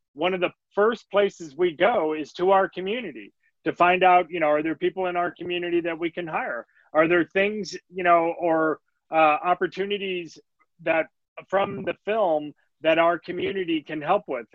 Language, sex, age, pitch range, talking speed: English, male, 30-49, 155-190 Hz, 180 wpm